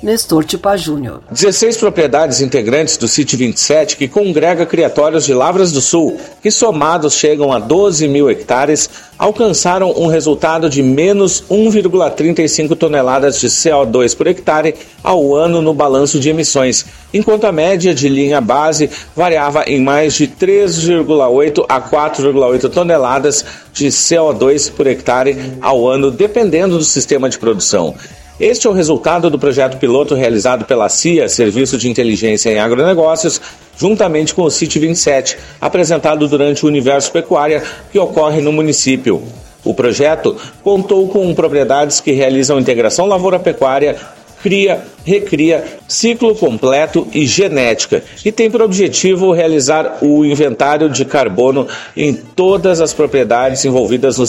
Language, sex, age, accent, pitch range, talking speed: Portuguese, male, 50-69, Brazilian, 140-185 Hz, 135 wpm